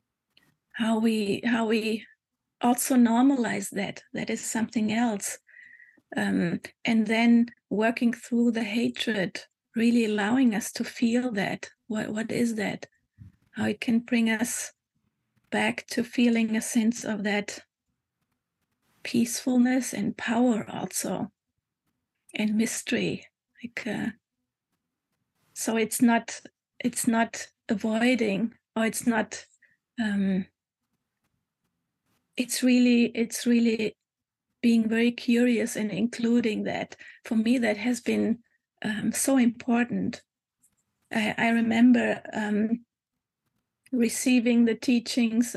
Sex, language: female, English